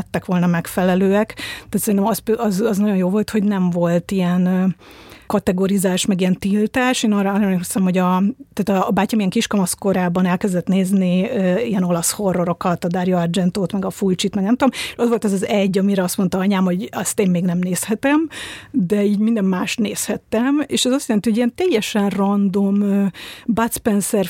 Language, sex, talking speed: Hungarian, female, 185 wpm